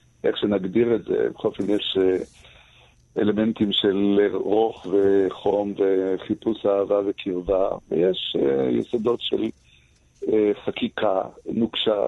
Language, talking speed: Hebrew, 95 wpm